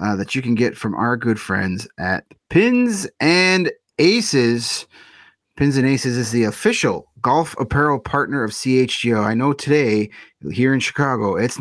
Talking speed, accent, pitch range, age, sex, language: 160 wpm, American, 115-150 Hz, 30-49, male, English